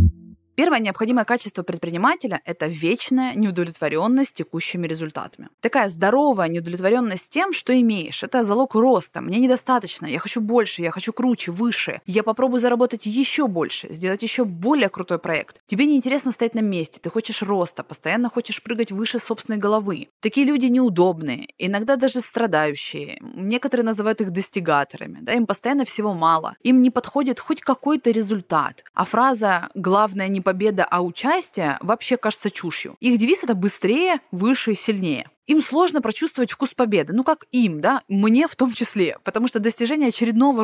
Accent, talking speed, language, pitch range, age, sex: native, 160 wpm, Russian, 190-260 Hz, 20-39, female